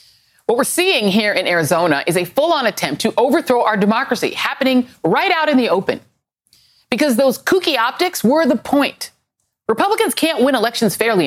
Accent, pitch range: American, 190-265 Hz